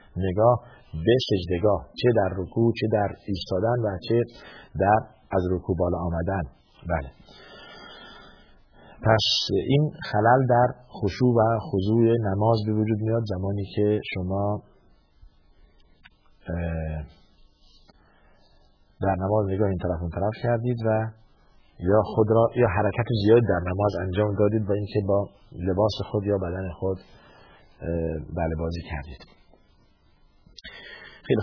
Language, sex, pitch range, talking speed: Persian, male, 90-115 Hz, 120 wpm